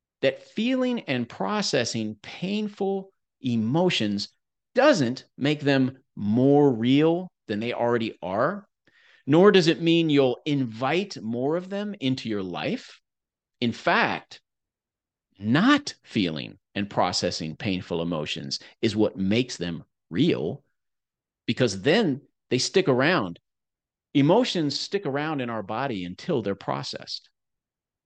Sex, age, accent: male, 40-59, American